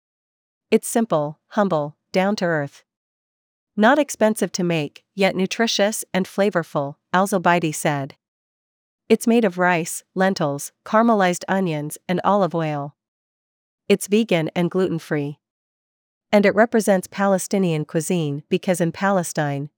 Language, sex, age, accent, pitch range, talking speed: English, female, 40-59, American, 165-200 Hz, 110 wpm